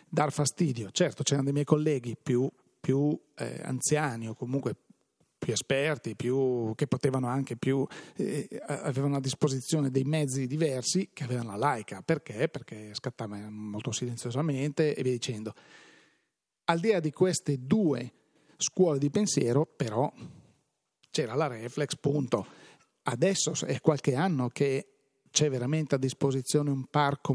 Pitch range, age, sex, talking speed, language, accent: 125-155 Hz, 40-59, male, 140 wpm, Italian, native